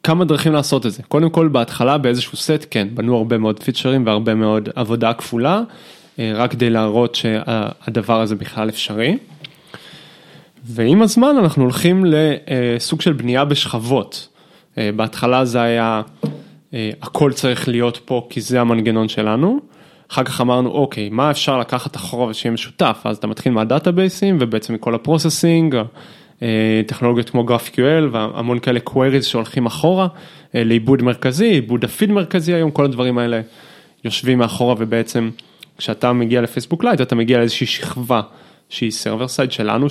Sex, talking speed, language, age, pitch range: male, 140 wpm, Hebrew, 20-39, 115-150 Hz